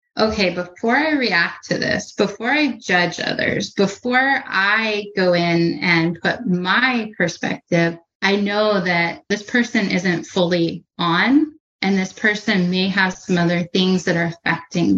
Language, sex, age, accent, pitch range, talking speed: English, female, 30-49, American, 175-210 Hz, 150 wpm